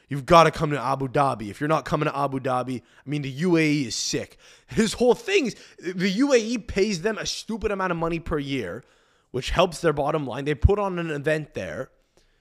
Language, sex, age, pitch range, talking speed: English, male, 20-39, 140-185 Hz, 220 wpm